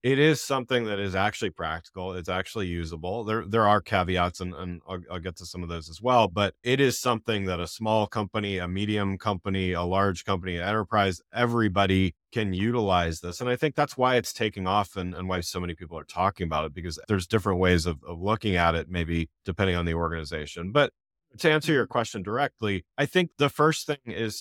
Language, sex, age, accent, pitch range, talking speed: English, male, 30-49, American, 90-110 Hz, 220 wpm